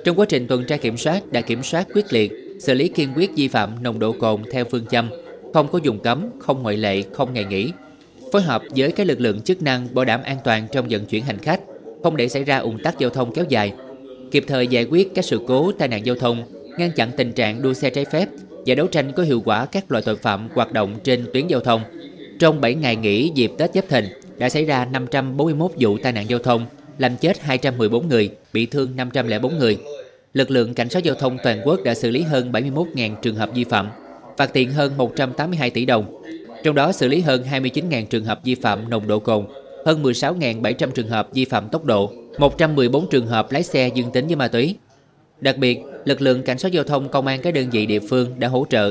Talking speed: 235 wpm